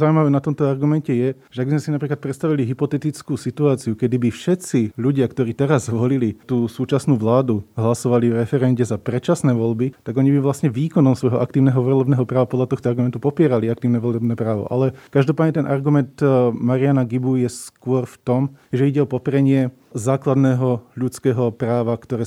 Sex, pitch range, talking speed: male, 120-135 Hz, 170 wpm